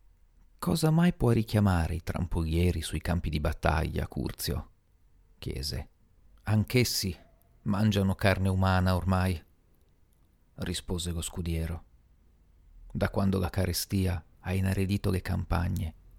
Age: 40-59